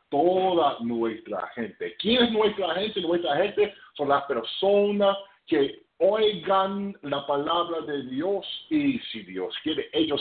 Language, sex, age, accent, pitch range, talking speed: English, male, 50-69, American, 140-220 Hz, 135 wpm